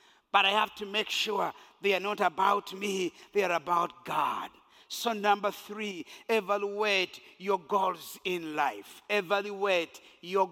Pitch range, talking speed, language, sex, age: 185-240 Hz, 145 wpm, English, male, 50-69